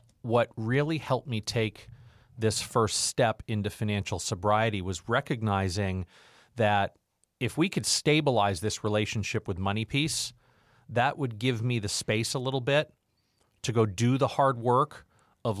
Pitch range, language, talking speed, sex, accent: 105-130 Hz, English, 150 wpm, male, American